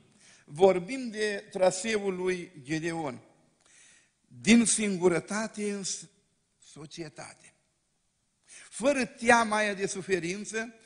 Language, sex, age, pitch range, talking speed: Romanian, male, 50-69, 170-220 Hz, 75 wpm